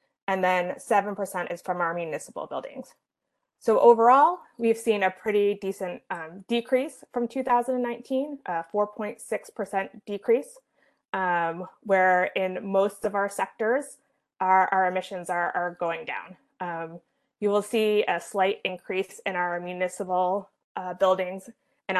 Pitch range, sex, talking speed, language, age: 180-220 Hz, female, 135 wpm, English, 20-39